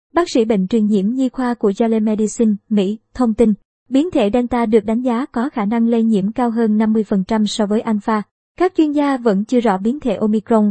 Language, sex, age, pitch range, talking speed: Vietnamese, male, 20-39, 215-260 Hz, 220 wpm